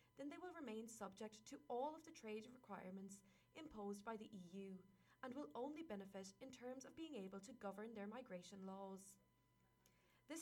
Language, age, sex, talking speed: English, 20-39, female, 175 wpm